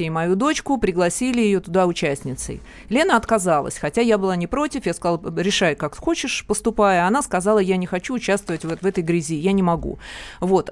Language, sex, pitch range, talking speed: Russian, female, 180-225 Hz, 190 wpm